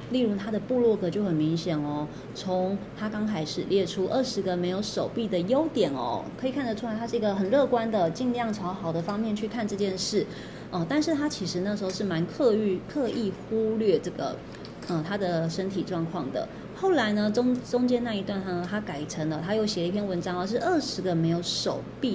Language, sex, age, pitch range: Chinese, female, 20-39, 180-240 Hz